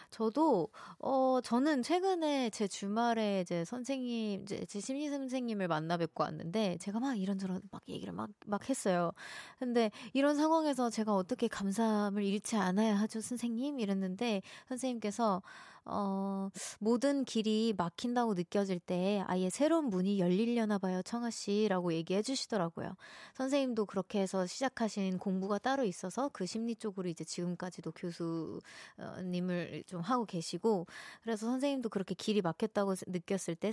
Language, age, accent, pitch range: Korean, 20-39, native, 185-245 Hz